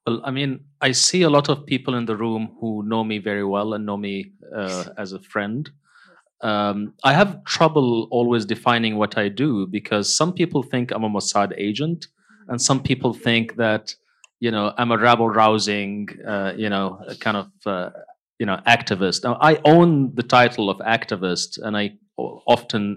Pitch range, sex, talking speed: 100-125 Hz, male, 185 wpm